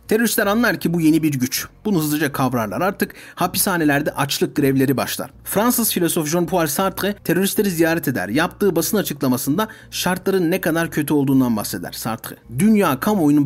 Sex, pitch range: male, 135-190 Hz